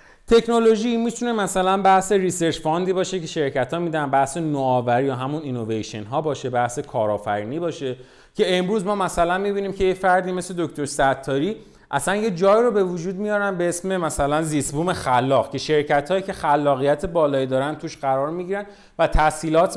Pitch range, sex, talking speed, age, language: 135-195 Hz, male, 165 wpm, 30-49, Persian